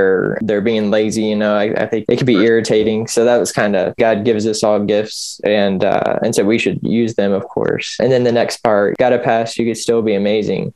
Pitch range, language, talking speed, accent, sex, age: 105-120 Hz, English, 250 wpm, American, male, 10-29